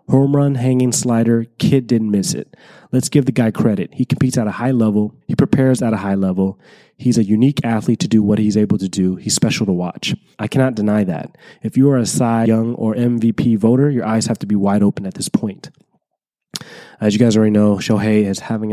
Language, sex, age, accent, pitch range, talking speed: English, male, 20-39, American, 105-130 Hz, 230 wpm